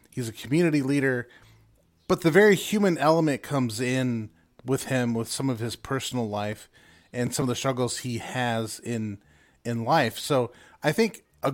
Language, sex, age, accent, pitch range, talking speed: English, male, 30-49, American, 115-140 Hz, 170 wpm